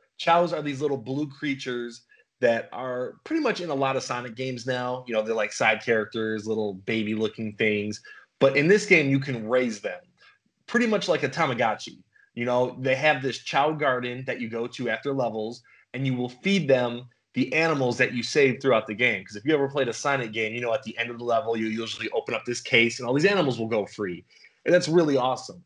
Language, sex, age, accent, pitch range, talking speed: English, male, 20-39, American, 115-140 Hz, 230 wpm